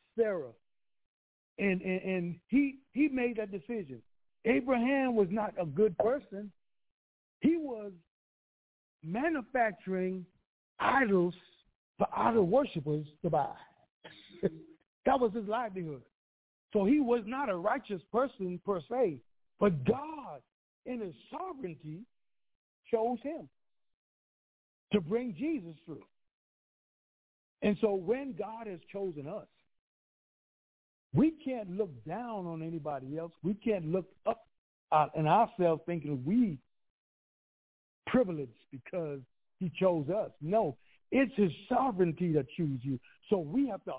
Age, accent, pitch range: 60-79, American, 160-230 Hz